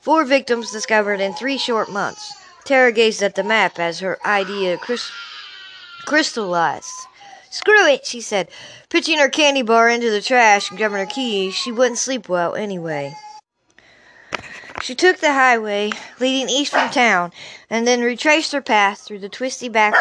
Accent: American